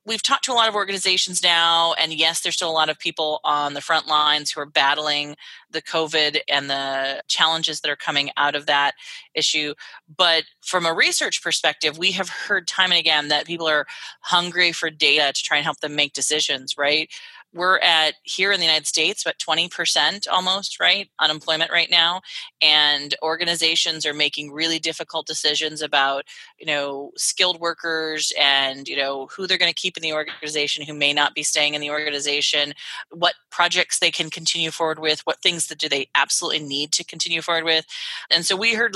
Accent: American